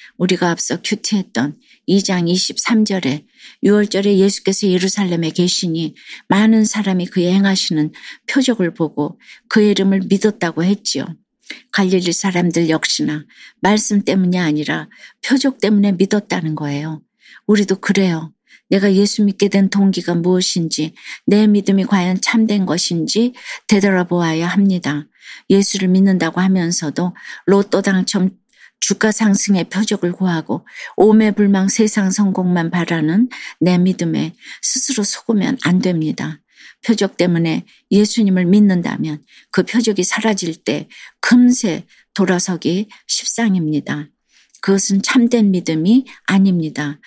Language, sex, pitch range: Korean, female, 175-210 Hz